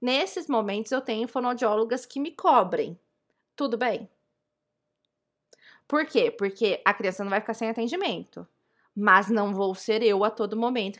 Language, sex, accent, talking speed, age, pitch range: Portuguese, female, Brazilian, 155 wpm, 20-39, 205-265 Hz